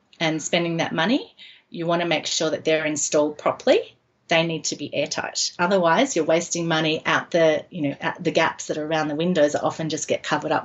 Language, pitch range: English, 160-210 Hz